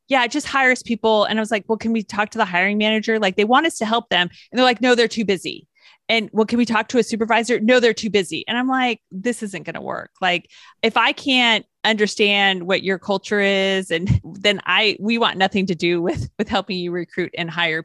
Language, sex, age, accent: English, female, 30-49, American